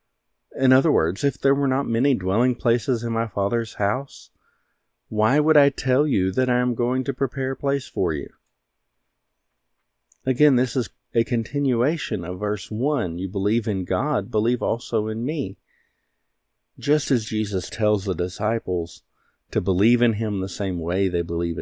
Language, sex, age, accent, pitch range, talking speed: English, male, 50-69, American, 95-120 Hz, 165 wpm